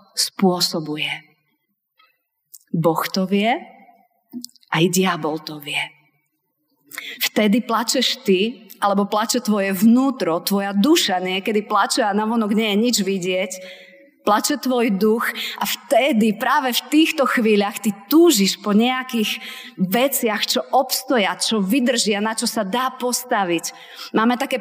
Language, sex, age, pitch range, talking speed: Slovak, female, 30-49, 185-235 Hz, 120 wpm